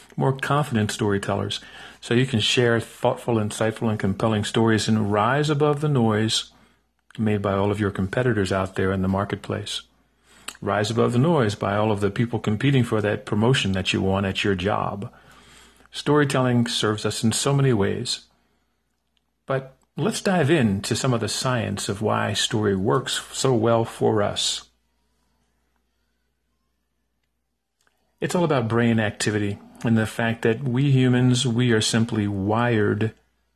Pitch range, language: 100-125 Hz, English